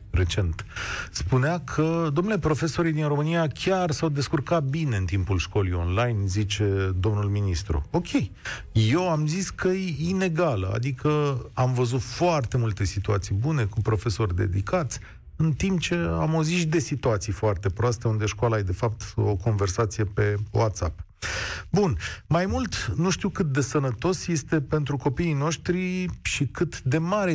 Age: 40-59